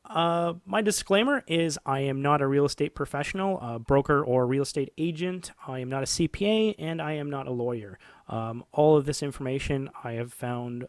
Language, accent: English, American